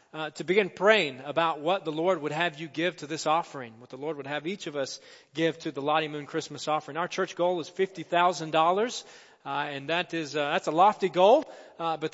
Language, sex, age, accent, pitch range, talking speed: English, male, 40-59, American, 145-190 Hz, 230 wpm